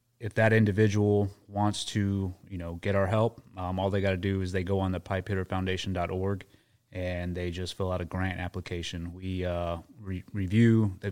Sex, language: male, English